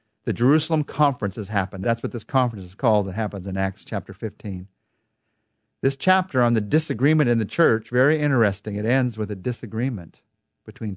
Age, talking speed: 50-69, 180 wpm